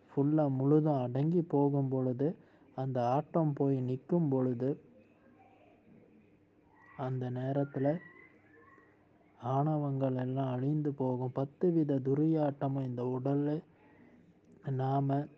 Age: 20-39